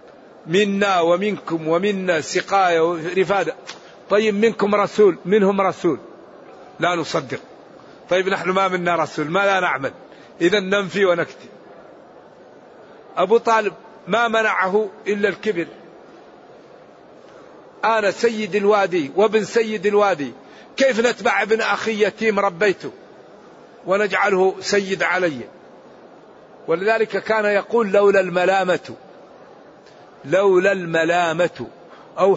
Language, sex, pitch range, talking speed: Arabic, male, 180-210 Hz, 95 wpm